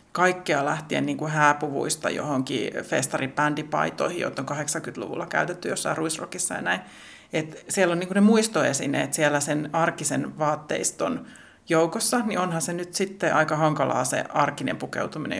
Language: Finnish